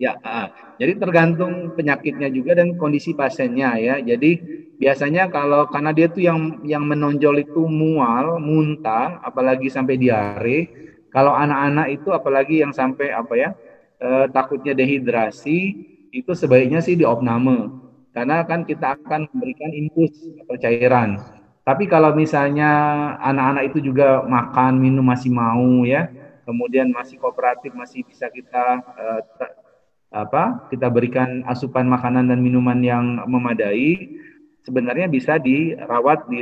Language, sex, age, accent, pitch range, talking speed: Indonesian, male, 30-49, native, 125-160 Hz, 130 wpm